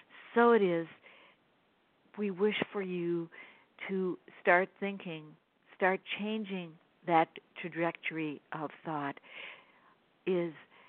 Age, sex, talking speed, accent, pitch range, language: 60-79, female, 95 wpm, American, 155-190 Hz, English